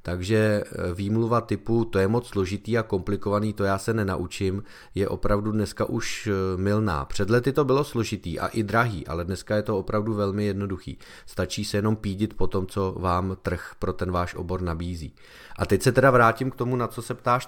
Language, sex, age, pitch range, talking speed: Czech, male, 30-49, 95-125 Hz, 195 wpm